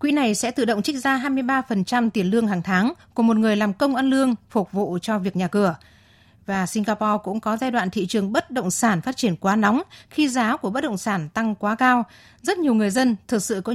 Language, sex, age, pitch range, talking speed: Vietnamese, female, 20-39, 195-245 Hz, 245 wpm